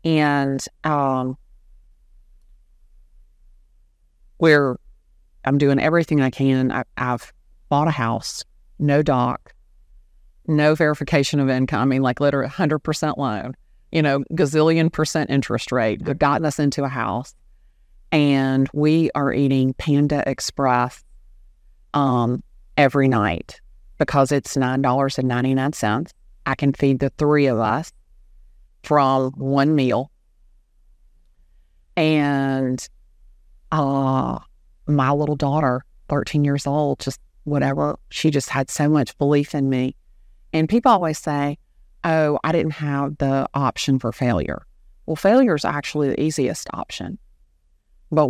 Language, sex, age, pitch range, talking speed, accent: English, female, 40-59, 105-150 Hz, 125 wpm, American